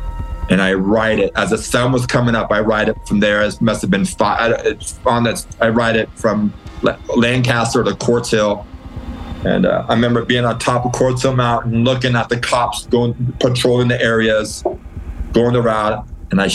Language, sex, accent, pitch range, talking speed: English, male, American, 105-125 Hz, 195 wpm